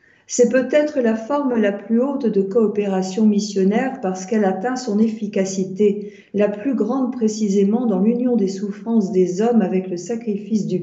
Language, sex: French, female